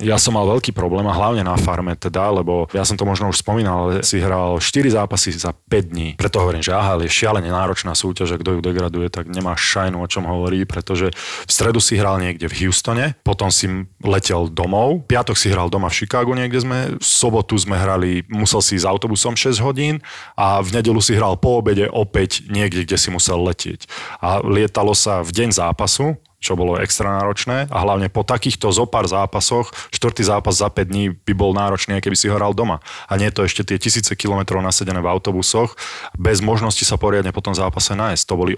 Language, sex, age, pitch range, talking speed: Slovak, male, 20-39, 95-105 Hz, 210 wpm